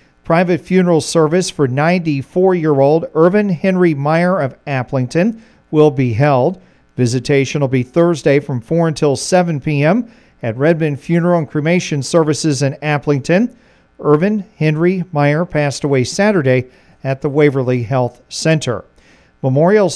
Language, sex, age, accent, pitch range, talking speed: English, male, 40-59, American, 135-180 Hz, 125 wpm